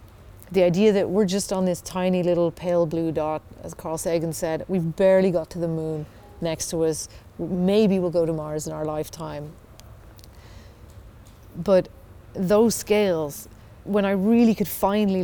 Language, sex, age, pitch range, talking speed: English, female, 30-49, 110-180 Hz, 160 wpm